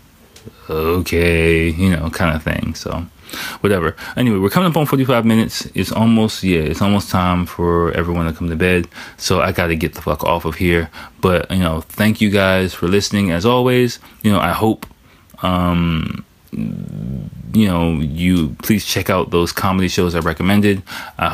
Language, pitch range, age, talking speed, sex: English, 85-105 Hz, 20-39, 175 wpm, male